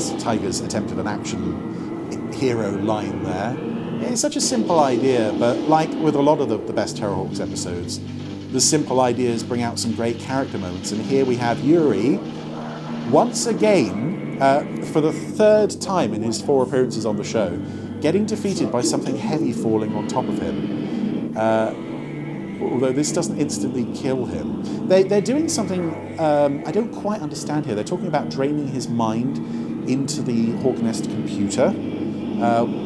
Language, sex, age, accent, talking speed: English, male, 40-59, British, 165 wpm